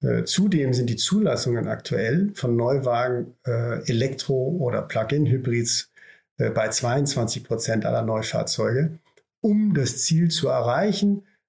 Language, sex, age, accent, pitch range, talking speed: German, male, 50-69, German, 120-155 Hz, 100 wpm